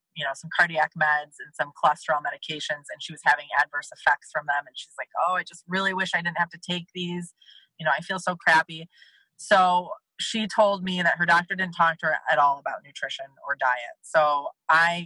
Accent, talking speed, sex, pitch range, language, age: American, 225 wpm, female, 150-180 Hz, English, 20-39